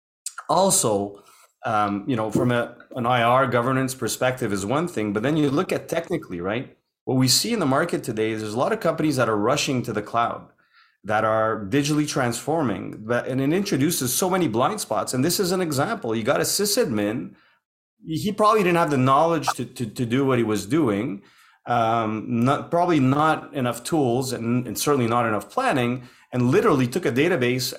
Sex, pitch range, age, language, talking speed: male, 110-135 Hz, 30-49, English, 195 wpm